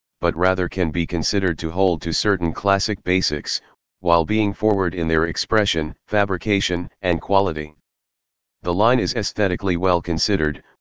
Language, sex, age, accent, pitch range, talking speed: English, male, 40-59, American, 85-100 Hz, 145 wpm